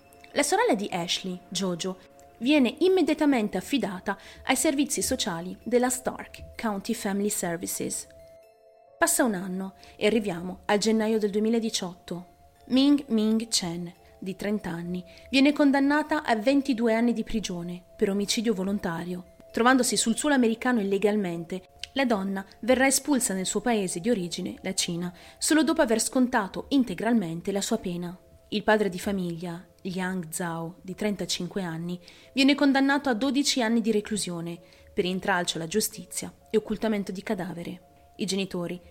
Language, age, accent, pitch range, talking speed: Italian, 30-49, native, 180-230 Hz, 140 wpm